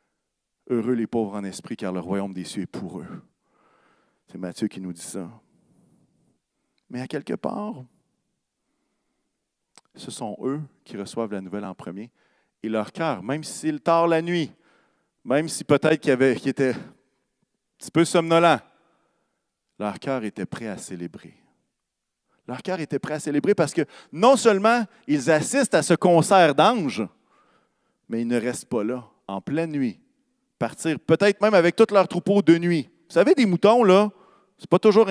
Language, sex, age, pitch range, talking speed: French, male, 40-59, 130-195 Hz, 175 wpm